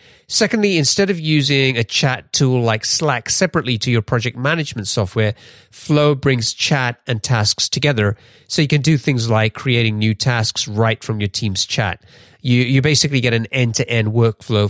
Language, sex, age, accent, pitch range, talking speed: English, male, 30-49, British, 110-135 Hz, 170 wpm